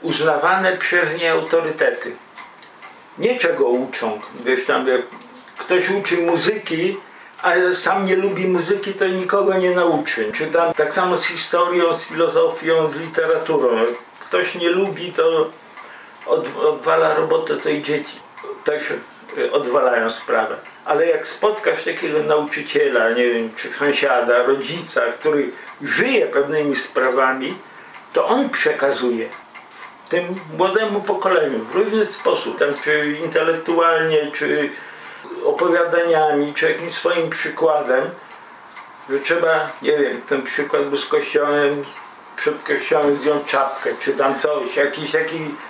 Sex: male